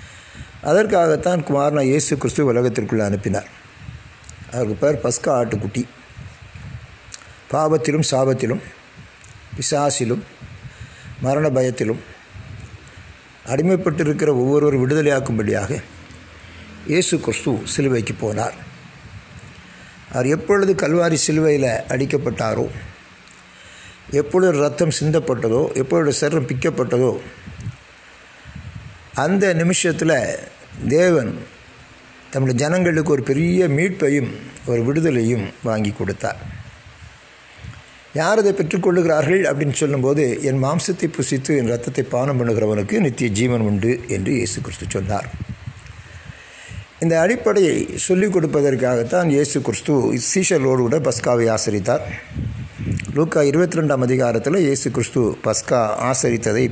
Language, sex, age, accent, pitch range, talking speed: Tamil, male, 60-79, native, 115-155 Hz, 85 wpm